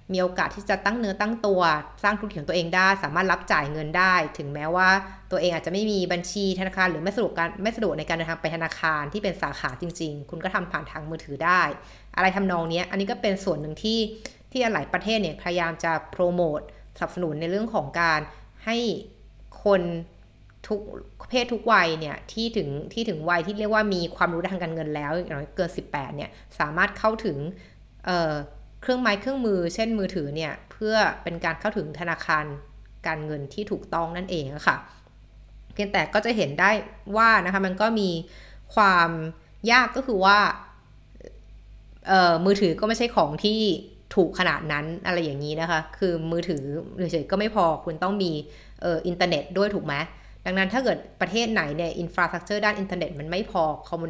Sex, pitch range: female, 160-205 Hz